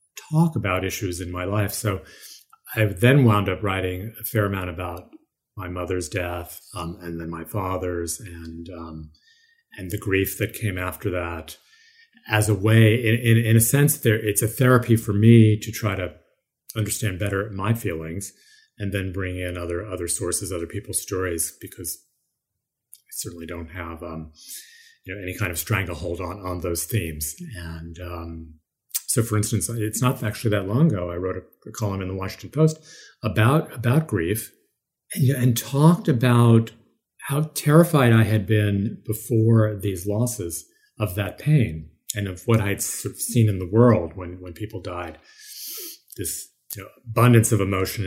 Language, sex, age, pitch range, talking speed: English, male, 30-49, 90-120 Hz, 170 wpm